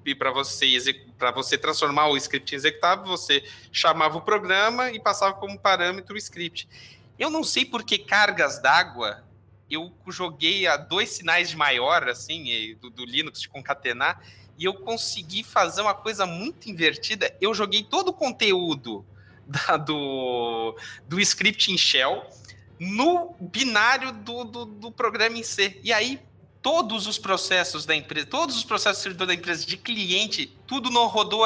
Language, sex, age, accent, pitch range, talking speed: English, male, 20-39, Brazilian, 140-220 Hz, 160 wpm